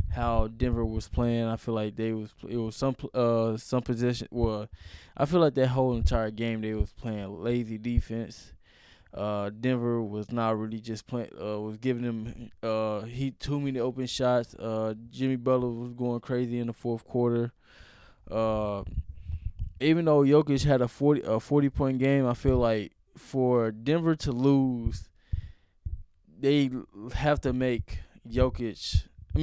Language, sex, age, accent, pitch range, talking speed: English, male, 20-39, American, 105-130 Hz, 160 wpm